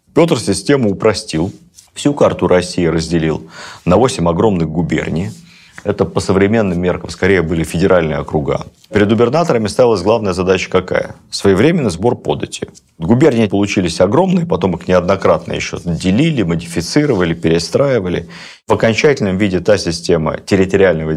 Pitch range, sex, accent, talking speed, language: 85-115 Hz, male, native, 125 wpm, Russian